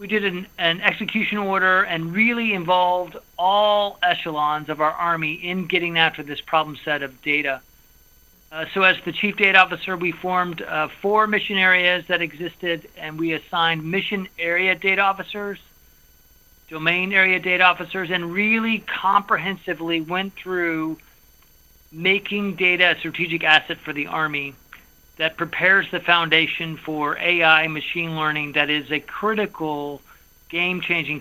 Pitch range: 155-190 Hz